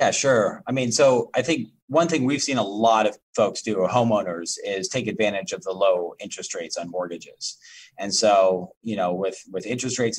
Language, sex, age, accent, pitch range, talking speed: English, male, 30-49, American, 95-120 Hz, 210 wpm